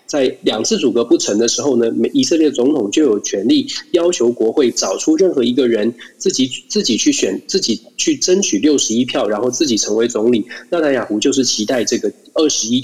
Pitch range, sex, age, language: 120-180 Hz, male, 20-39, Chinese